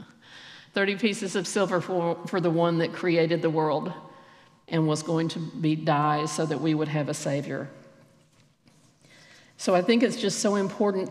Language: English